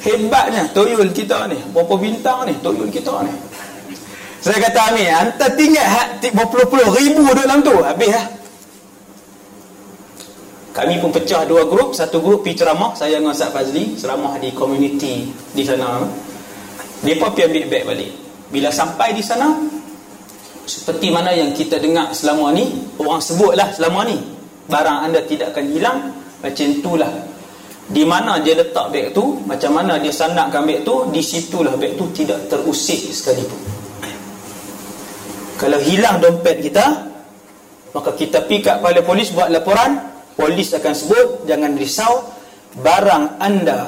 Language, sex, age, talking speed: Malay, male, 30-49, 140 wpm